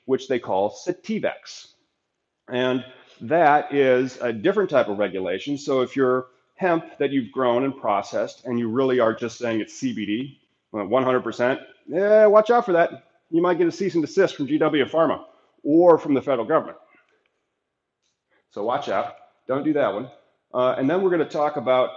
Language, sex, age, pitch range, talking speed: English, male, 30-49, 120-165 Hz, 180 wpm